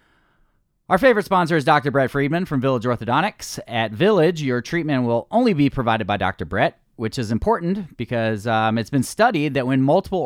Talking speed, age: 185 wpm, 30-49